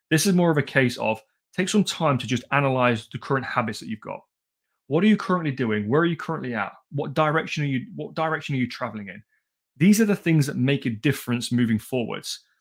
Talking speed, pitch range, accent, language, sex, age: 235 wpm, 125-155 Hz, British, English, male, 30-49